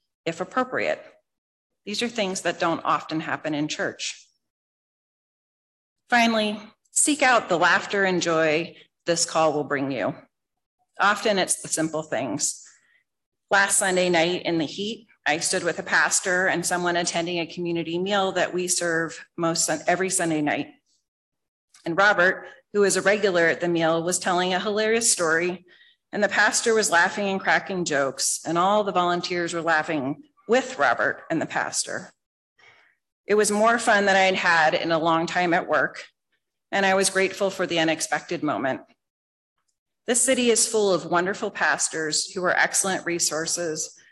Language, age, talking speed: English, 40-59, 160 wpm